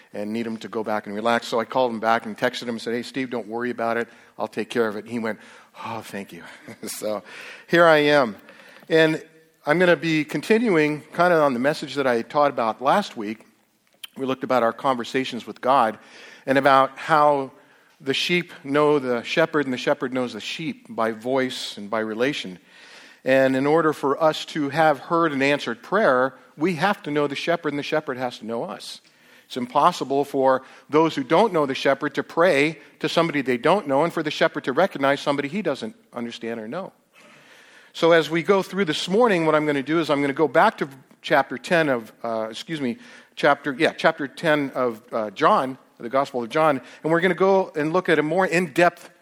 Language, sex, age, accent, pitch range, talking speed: English, male, 50-69, American, 125-160 Hz, 220 wpm